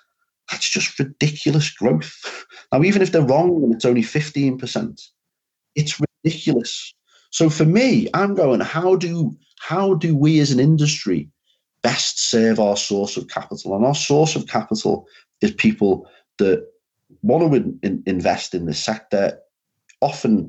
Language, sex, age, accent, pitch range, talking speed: English, male, 30-49, British, 125-205 Hz, 150 wpm